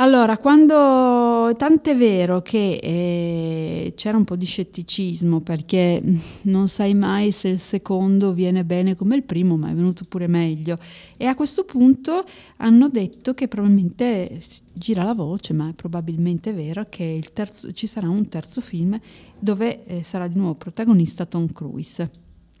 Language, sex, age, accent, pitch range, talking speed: German, female, 30-49, Italian, 175-230 Hz, 155 wpm